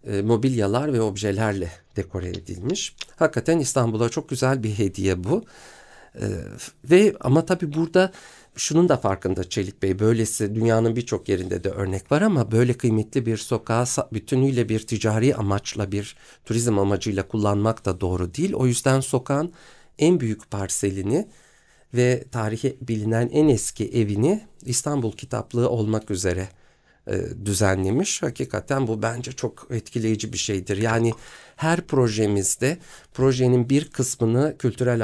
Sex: male